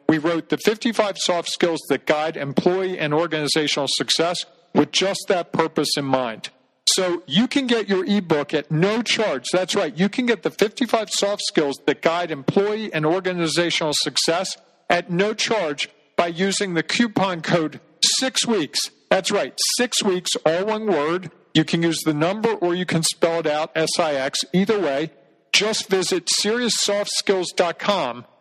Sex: male